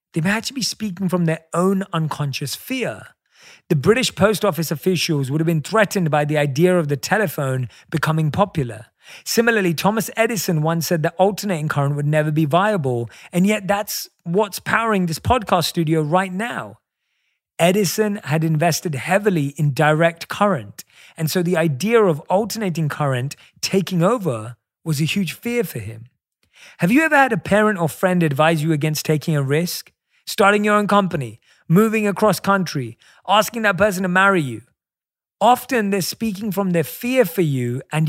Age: 30-49